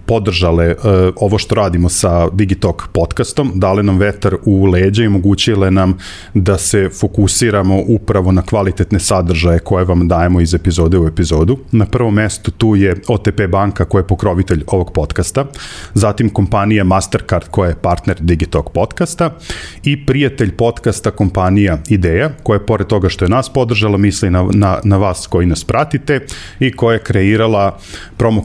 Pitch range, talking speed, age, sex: 90-105 Hz, 160 wpm, 40-59, male